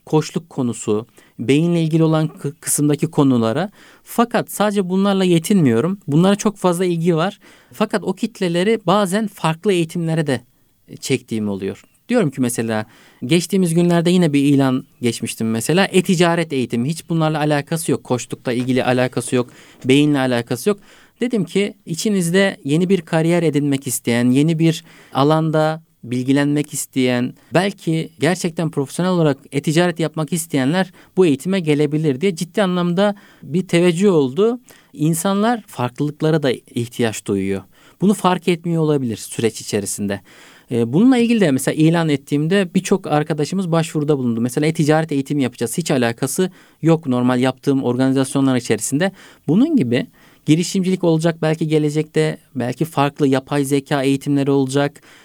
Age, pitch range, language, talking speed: 50-69, 135-180 Hz, Turkish, 130 wpm